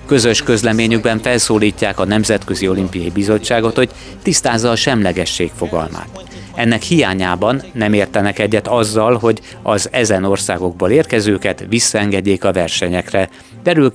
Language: Hungarian